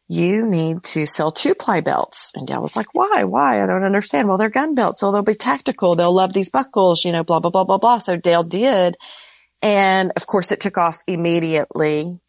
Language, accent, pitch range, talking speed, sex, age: English, American, 155-195 Hz, 220 wpm, female, 40-59